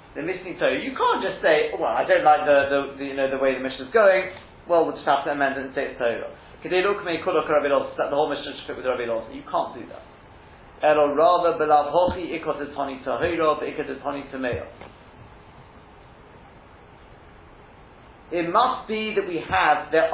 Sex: male